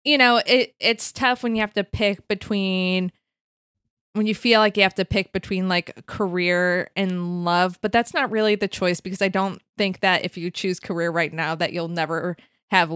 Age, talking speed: 20-39, 210 wpm